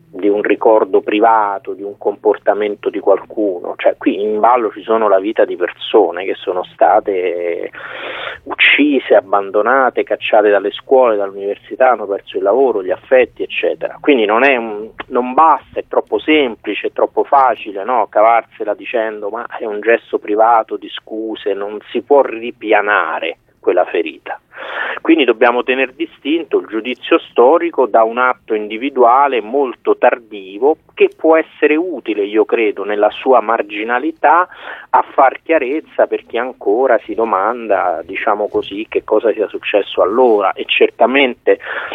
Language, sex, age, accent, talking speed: Italian, male, 30-49, native, 145 wpm